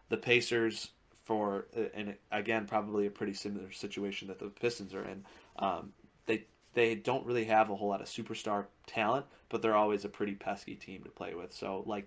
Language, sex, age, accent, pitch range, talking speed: English, male, 20-39, American, 95-110 Hz, 195 wpm